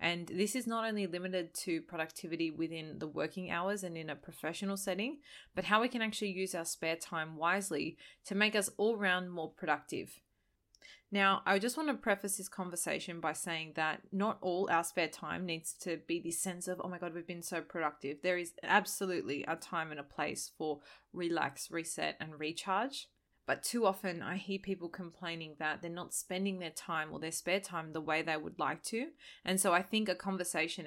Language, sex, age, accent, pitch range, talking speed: English, female, 20-39, Australian, 160-195 Hz, 205 wpm